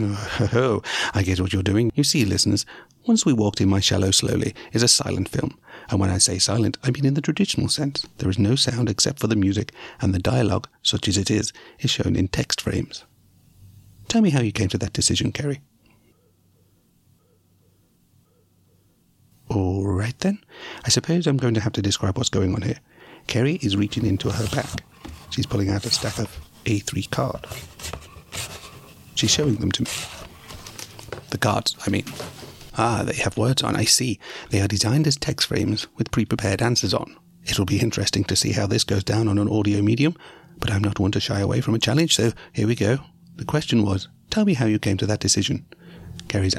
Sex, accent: male, British